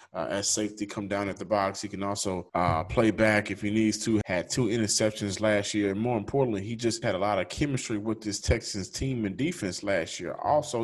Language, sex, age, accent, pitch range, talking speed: English, male, 20-39, American, 100-120 Hz, 230 wpm